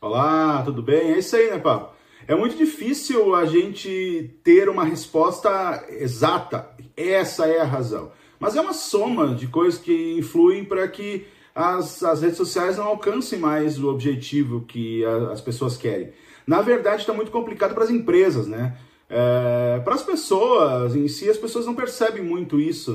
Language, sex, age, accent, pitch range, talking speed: Portuguese, male, 40-59, Brazilian, 145-220 Hz, 165 wpm